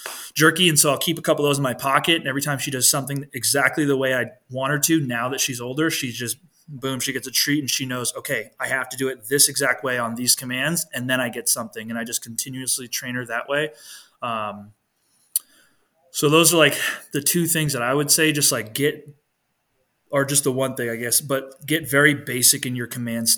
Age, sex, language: 20-39, male, English